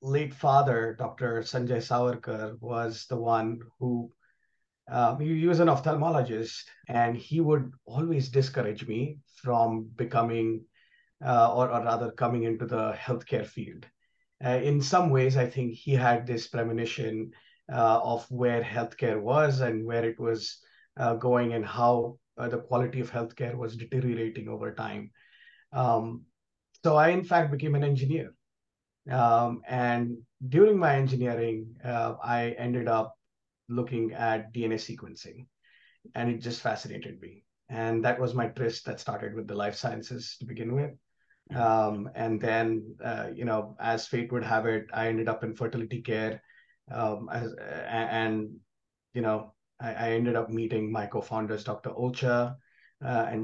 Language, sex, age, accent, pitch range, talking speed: English, male, 30-49, Indian, 115-125 Hz, 155 wpm